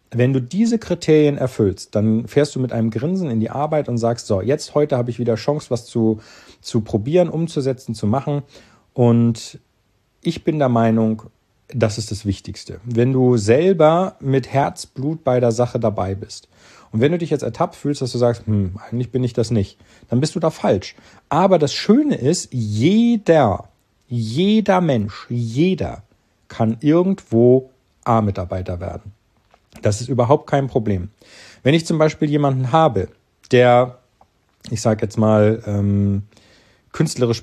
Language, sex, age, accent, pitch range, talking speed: German, male, 40-59, German, 110-145 Hz, 160 wpm